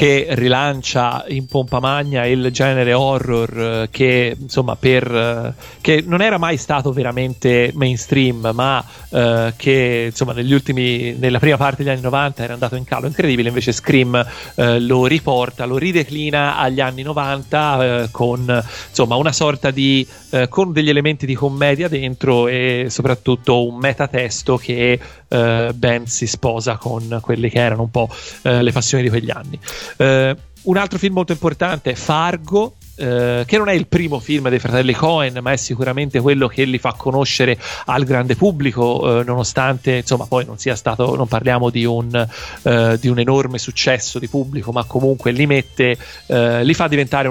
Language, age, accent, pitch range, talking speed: Italian, 30-49, native, 120-140 Hz, 170 wpm